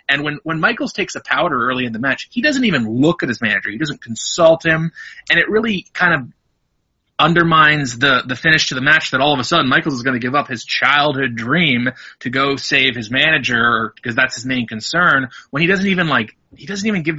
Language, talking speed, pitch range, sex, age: English, 235 wpm, 120-155 Hz, male, 30-49